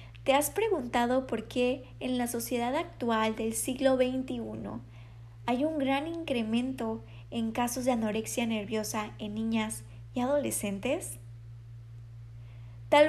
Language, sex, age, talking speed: Spanish, female, 20-39, 120 wpm